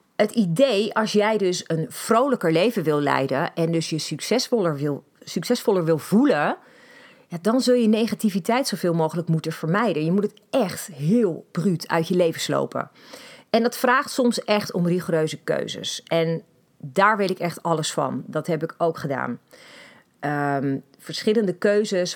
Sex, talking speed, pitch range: female, 155 wpm, 160-220 Hz